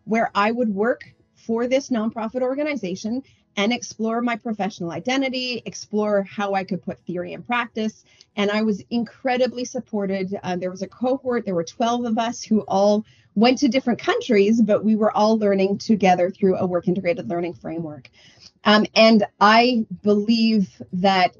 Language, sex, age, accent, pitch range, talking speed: English, female, 30-49, American, 190-240 Hz, 165 wpm